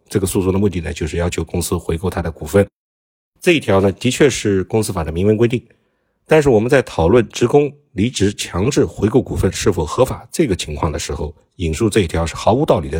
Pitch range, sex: 85-120 Hz, male